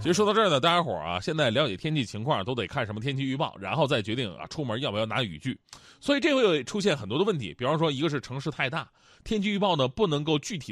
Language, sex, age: Chinese, male, 20-39